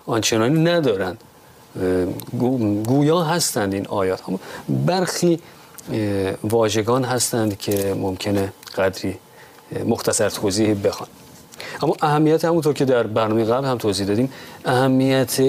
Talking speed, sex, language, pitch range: 105 wpm, male, Persian, 105-135 Hz